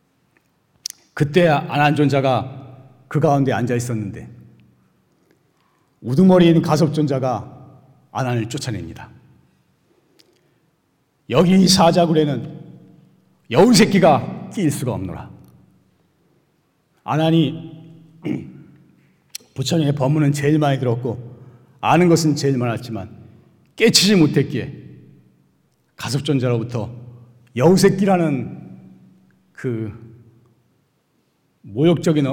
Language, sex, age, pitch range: Korean, male, 40-59, 120-160 Hz